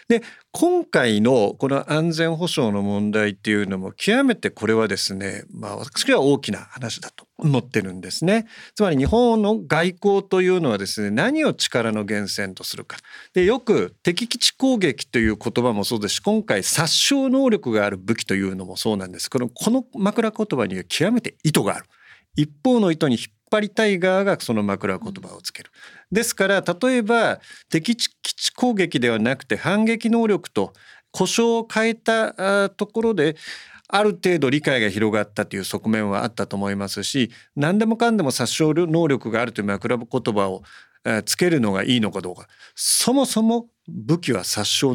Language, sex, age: Japanese, male, 40-59